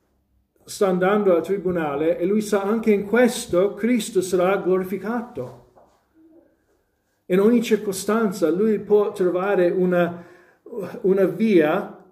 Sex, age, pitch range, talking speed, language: male, 50-69, 145-195 Hz, 110 wpm, Italian